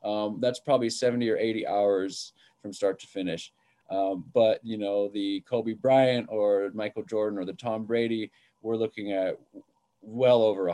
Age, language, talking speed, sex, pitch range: 20-39, English, 175 wpm, male, 105-125 Hz